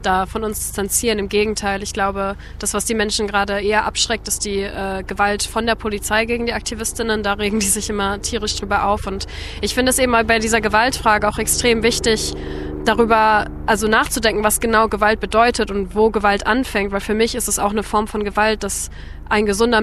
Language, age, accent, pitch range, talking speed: German, 20-39, German, 205-230 Hz, 205 wpm